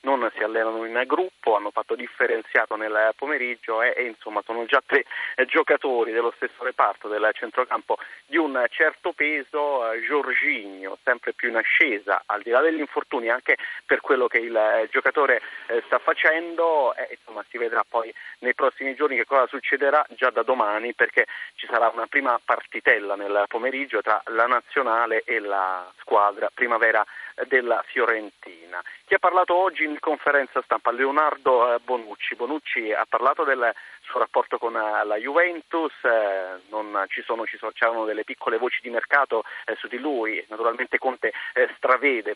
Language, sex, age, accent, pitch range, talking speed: Italian, male, 30-49, native, 110-185 Hz, 155 wpm